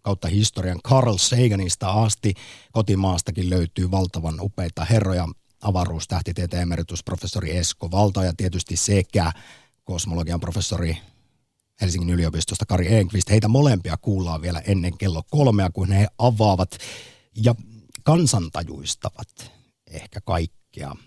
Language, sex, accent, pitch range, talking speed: Finnish, male, native, 90-120 Hz, 105 wpm